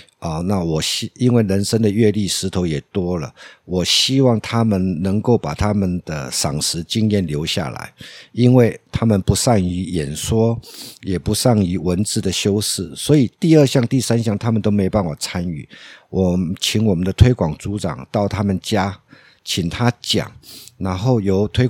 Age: 50-69